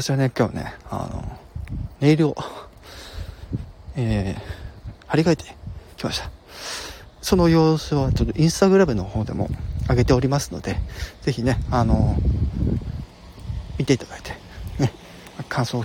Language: Japanese